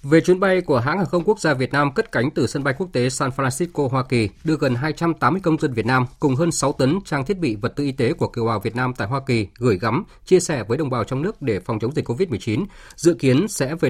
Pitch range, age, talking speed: 120-160 Hz, 20-39, 285 wpm